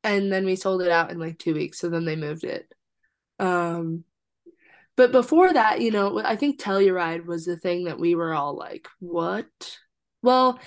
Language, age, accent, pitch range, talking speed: English, 20-39, American, 175-230 Hz, 190 wpm